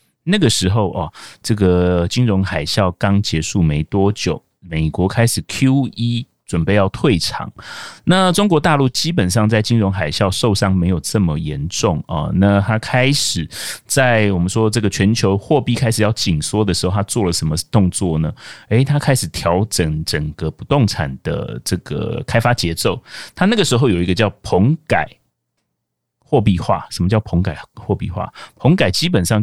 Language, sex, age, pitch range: Chinese, male, 30-49, 90-120 Hz